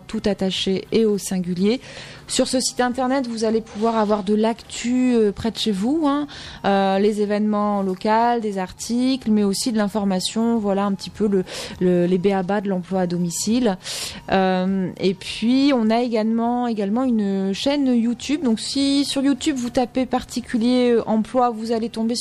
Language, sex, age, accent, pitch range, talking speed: French, female, 20-39, French, 190-240 Hz, 175 wpm